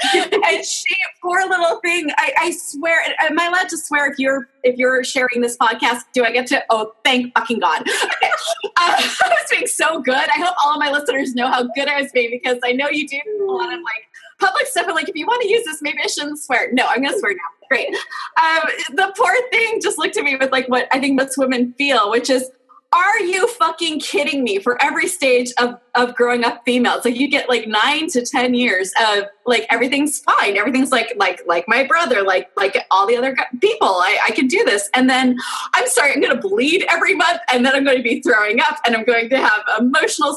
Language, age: English, 20-39